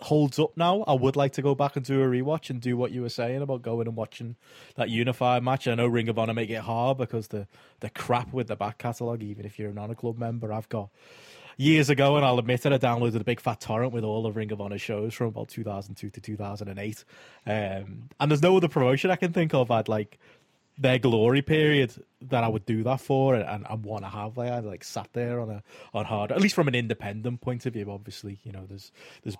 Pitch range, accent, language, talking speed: 110-140 Hz, British, English, 250 wpm